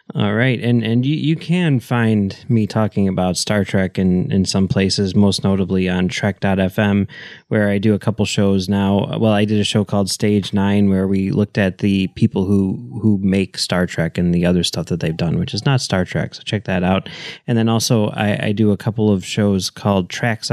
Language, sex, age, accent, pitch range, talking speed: English, male, 20-39, American, 95-110 Hz, 220 wpm